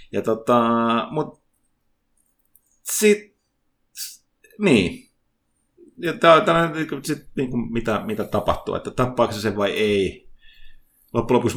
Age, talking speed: 30-49, 100 wpm